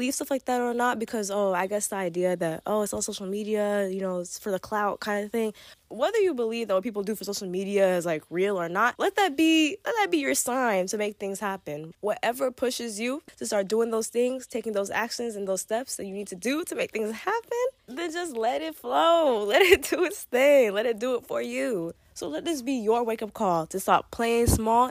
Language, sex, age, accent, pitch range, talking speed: English, female, 20-39, American, 190-255 Hz, 250 wpm